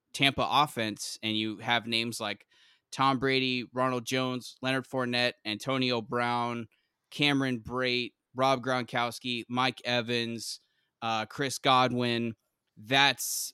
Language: English